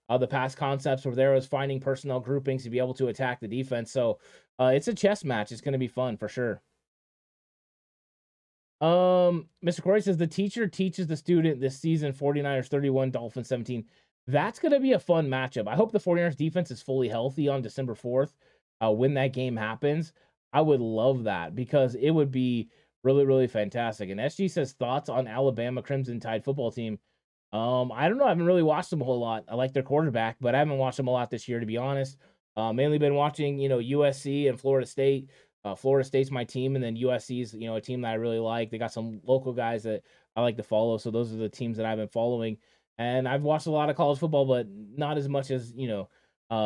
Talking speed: 230 wpm